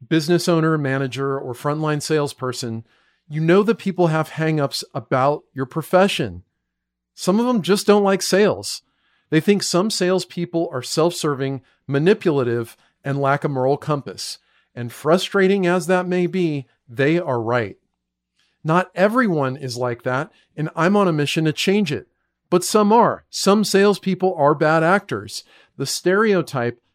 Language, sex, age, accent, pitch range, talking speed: English, male, 40-59, American, 130-180 Hz, 145 wpm